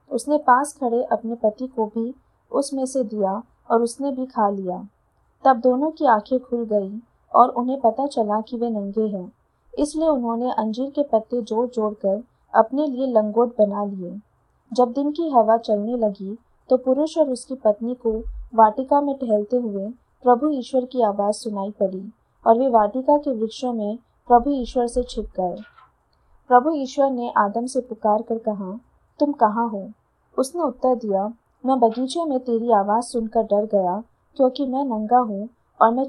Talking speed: 170 wpm